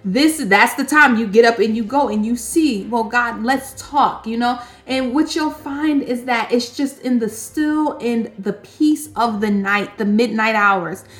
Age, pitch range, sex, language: 30-49, 220-260 Hz, female, English